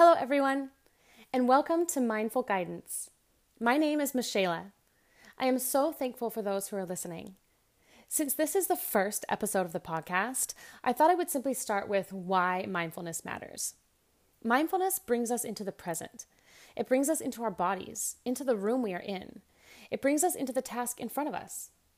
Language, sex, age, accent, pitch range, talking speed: English, female, 20-39, American, 195-260 Hz, 185 wpm